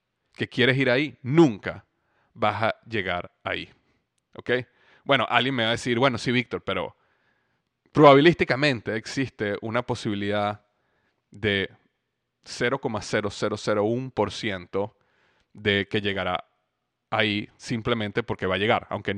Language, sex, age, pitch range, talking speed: Spanish, male, 30-49, 105-130 Hz, 115 wpm